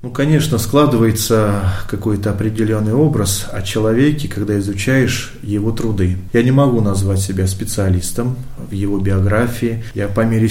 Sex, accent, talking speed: male, native, 135 wpm